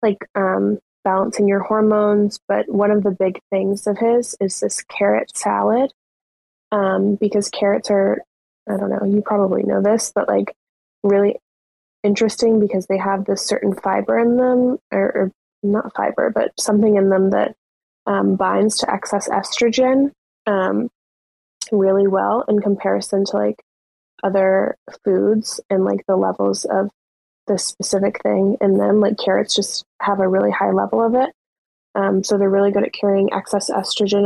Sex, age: female, 20-39